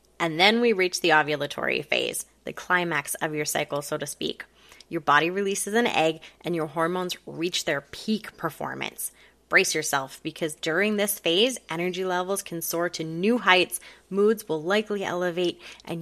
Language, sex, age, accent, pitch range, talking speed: English, female, 20-39, American, 160-200 Hz, 170 wpm